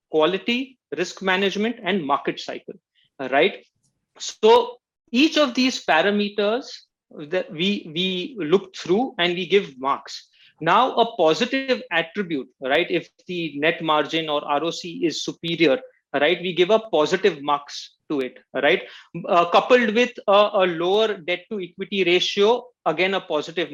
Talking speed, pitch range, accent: 140 wpm, 170-230 Hz, Indian